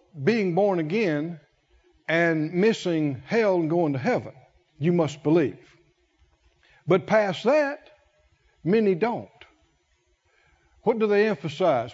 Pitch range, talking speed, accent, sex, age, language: 140-190 Hz, 110 wpm, American, male, 60-79, English